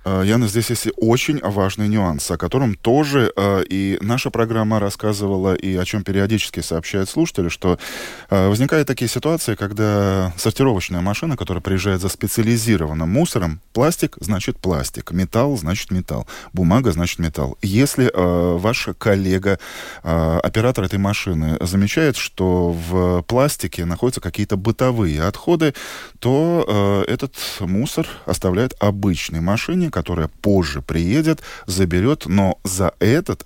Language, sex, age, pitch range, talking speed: Russian, male, 20-39, 90-115 Hz, 130 wpm